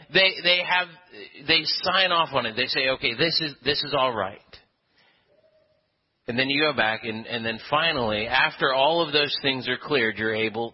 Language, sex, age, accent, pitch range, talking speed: English, male, 30-49, American, 130-185 Hz, 195 wpm